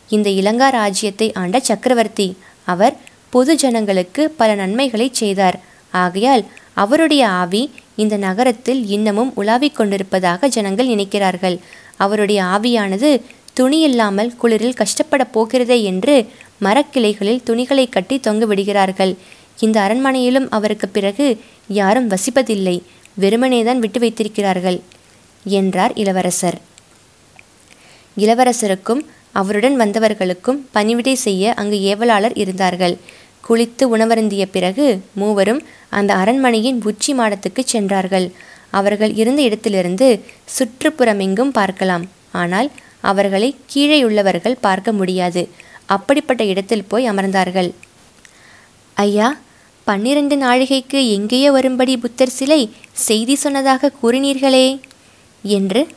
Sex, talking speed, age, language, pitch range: female, 95 wpm, 20-39, Tamil, 200-255 Hz